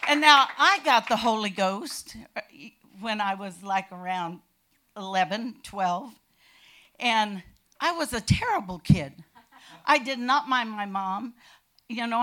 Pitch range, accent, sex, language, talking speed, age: 205-265 Hz, American, female, English, 135 wpm, 50-69